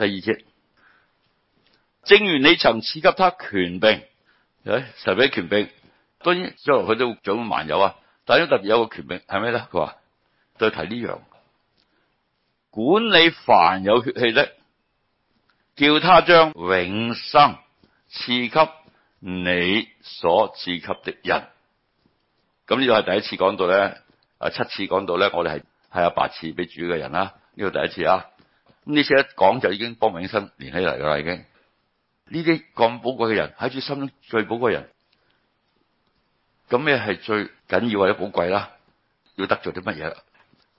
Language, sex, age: Chinese, male, 60-79